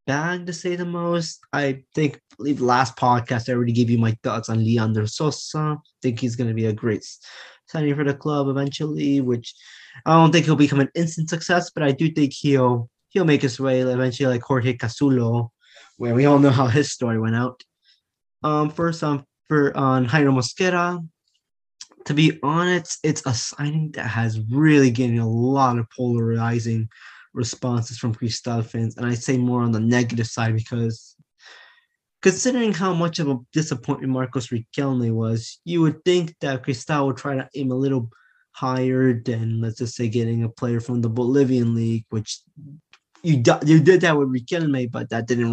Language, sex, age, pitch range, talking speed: English, male, 20-39, 120-150 Hz, 185 wpm